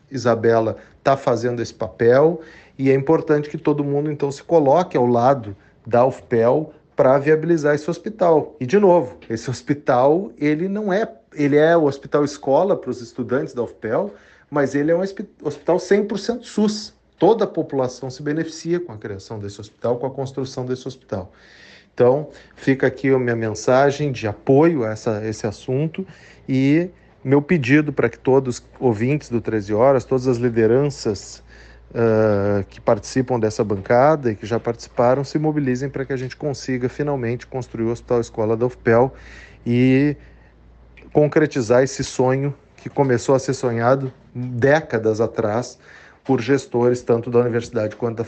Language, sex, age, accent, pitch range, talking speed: Portuguese, male, 40-59, Brazilian, 115-145 Hz, 160 wpm